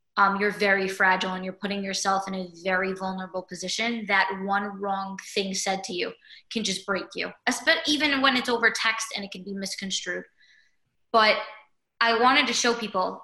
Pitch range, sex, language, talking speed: 195-235 Hz, female, English, 185 wpm